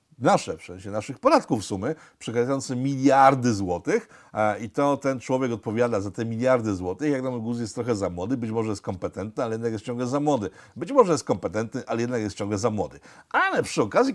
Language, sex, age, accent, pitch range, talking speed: Polish, male, 50-69, native, 105-145 Hz, 210 wpm